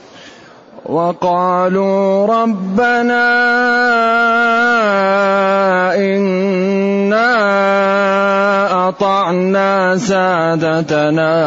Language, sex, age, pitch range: Arabic, male, 30-49, 150-190 Hz